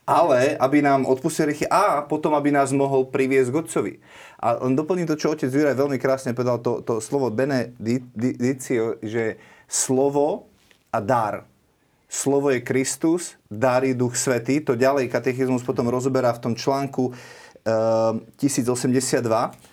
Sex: male